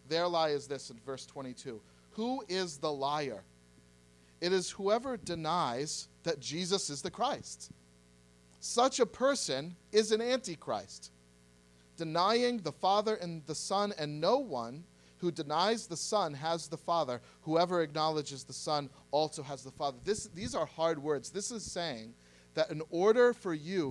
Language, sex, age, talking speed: English, male, 40-59, 155 wpm